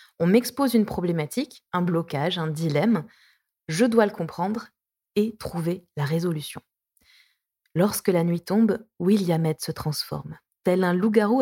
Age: 20-39